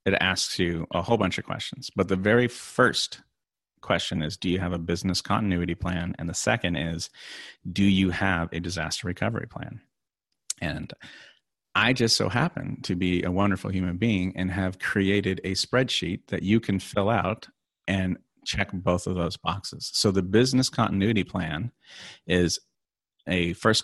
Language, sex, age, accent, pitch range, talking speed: English, male, 30-49, American, 90-105 Hz, 170 wpm